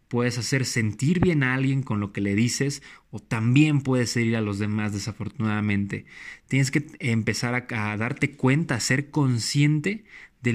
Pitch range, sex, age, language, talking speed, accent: 105-130 Hz, male, 20-39, Spanish, 170 wpm, Mexican